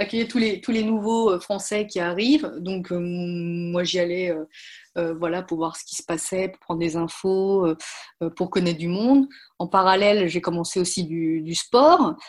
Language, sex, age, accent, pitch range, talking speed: French, female, 30-49, French, 170-205 Hz, 195 wpm